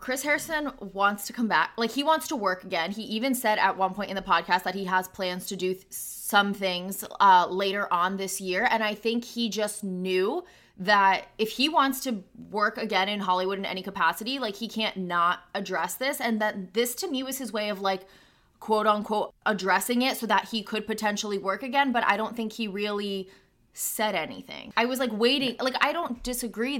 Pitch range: 195-250 Hz